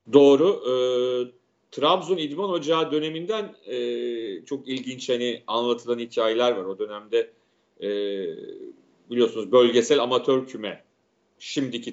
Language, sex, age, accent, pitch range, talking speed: Turkish, male, 40-59, native, 130-180 Hz, 105 wpm